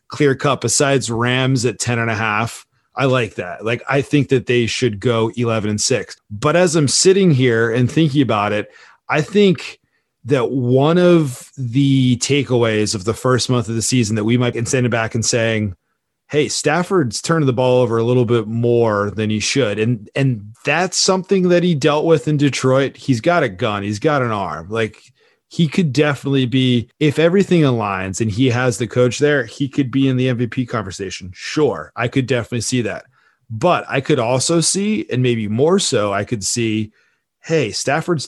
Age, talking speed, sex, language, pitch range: 30-49, 195 wpm, male, English, 115-145 Hz